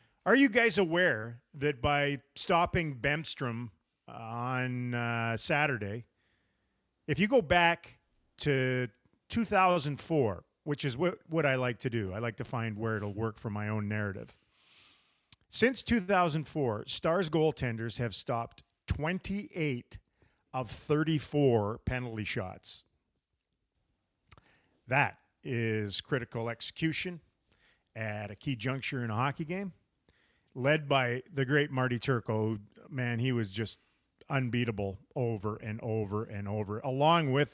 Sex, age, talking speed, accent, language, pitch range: male, 40-59, 125 wpm, American, English, 115-155 Hz